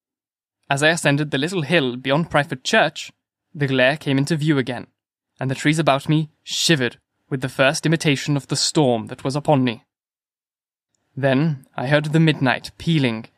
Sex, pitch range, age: male, 135-155 Hz, 20-39